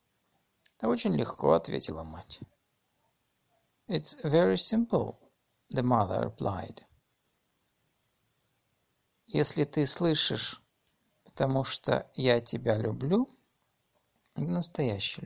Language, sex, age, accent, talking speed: Russian, male, 50-69, native, 80 wpm